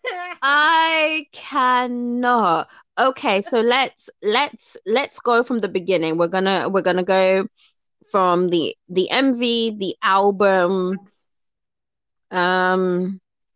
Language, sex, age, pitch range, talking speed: English, female, 20-39, 170-225 Hz, 100 wpm